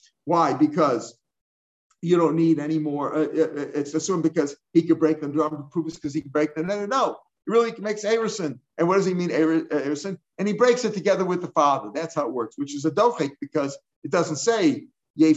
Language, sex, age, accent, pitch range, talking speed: English, male, 50-69, American, 150-190 Hz, 240 wpm